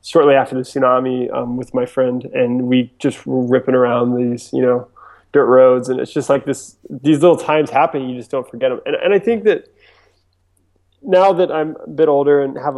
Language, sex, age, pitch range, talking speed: English, male, 20-39, 125-145 Hz, 215 wpm